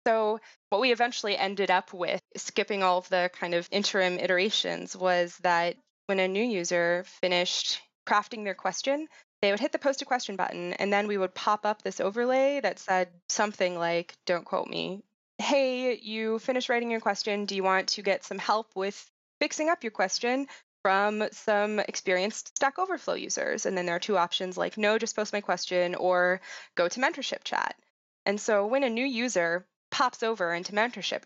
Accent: American